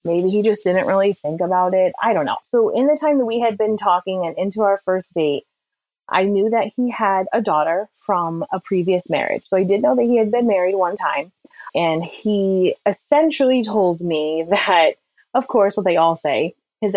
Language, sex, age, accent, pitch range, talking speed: English, female, 20-39, American, 175-210 Hz, 210 wpm